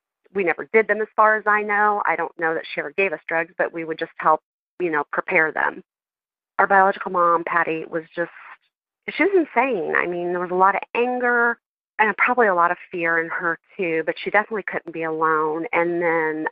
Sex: female